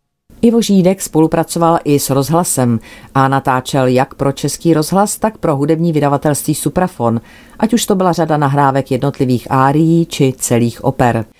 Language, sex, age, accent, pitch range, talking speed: Czech, female, 40-59, native, 125-145 Hz, 140 wpm